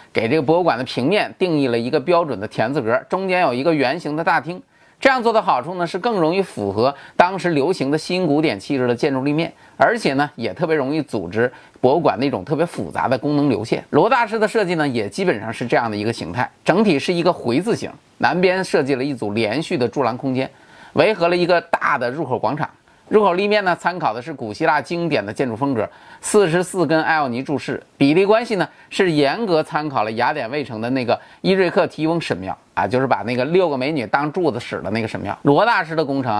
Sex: male